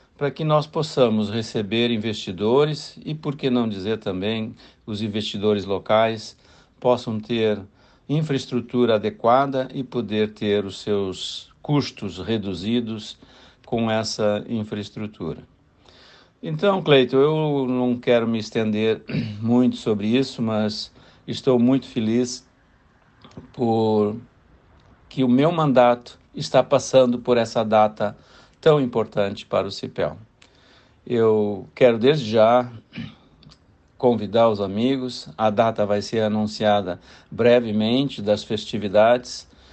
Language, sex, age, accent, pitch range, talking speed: Portuguese, male, 60-79, Brazilian, 105-125 Hz, 110 wpm